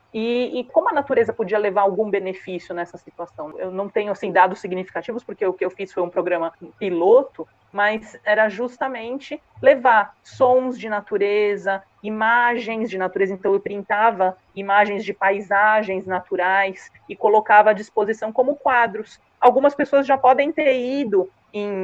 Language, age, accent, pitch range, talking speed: Portuguese, 30-49, Brazilian, 190-240 Hz, 150 wpm